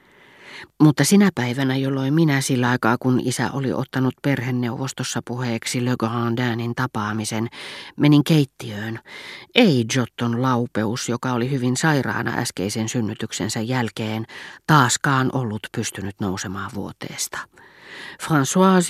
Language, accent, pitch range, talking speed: Finnish, native, 110-140 Hz, 110 wpm